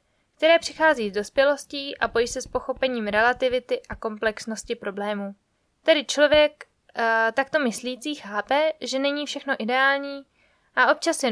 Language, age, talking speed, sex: Czech, 20-39, 140 wpm, female